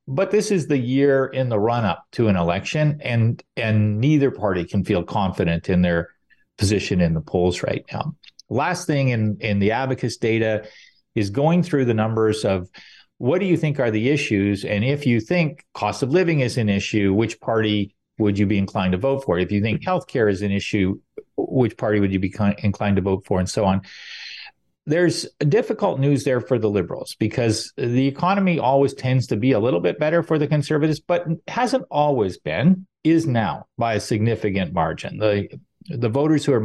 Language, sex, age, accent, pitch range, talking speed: English, male, 40-59, American, 100-140 Hz, 200 wpm